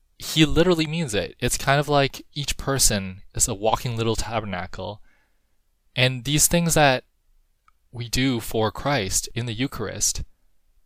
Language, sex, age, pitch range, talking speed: English, male, 20-39, 90-125 Hz, 145 wpm